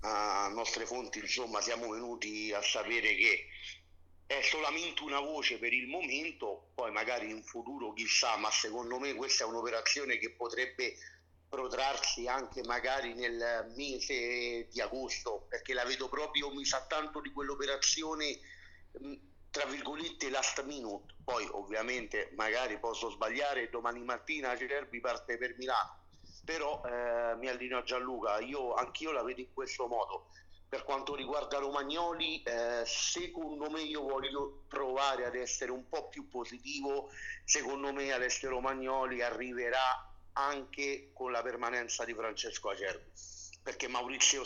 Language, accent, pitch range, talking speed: Italian, native, 115-140 Hz, 145 wpm